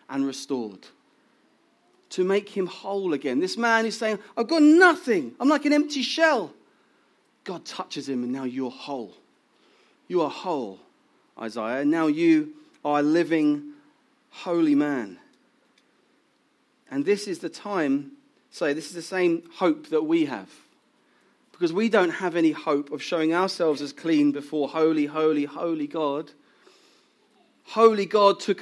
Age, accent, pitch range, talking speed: 30-49, British, 175-260 Hz, 150 wpm